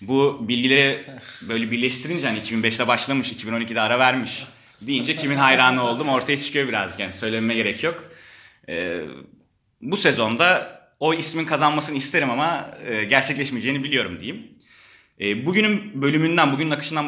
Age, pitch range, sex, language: 30-49, 110-140 Hz, male, Turkish